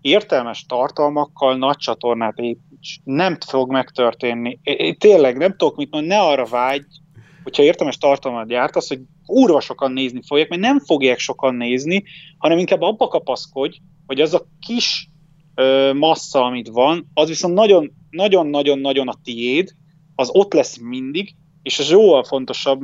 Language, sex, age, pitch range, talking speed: Hungarian, male, 30-49, 130-175 Hz, 145 wpm